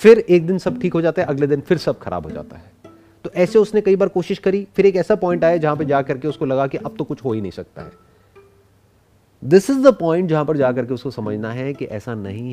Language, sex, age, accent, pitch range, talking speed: Hindi, male, 30-49, native, 135-215 Hz, 275 wpm